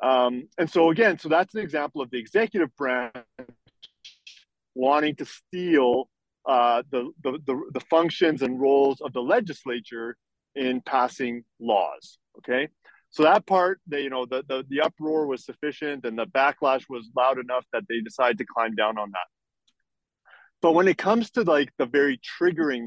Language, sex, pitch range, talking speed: English, male, 125-155 Hz, 170 wpm